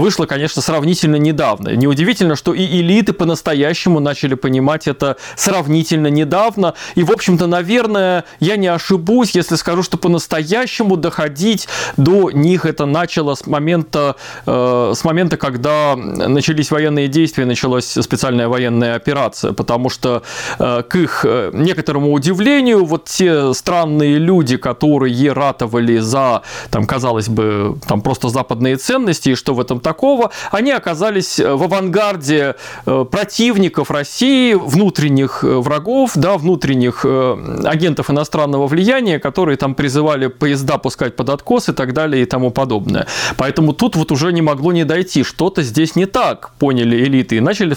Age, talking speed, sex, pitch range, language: 20-39, 135 wpm, male, 140-185 Hz, Russian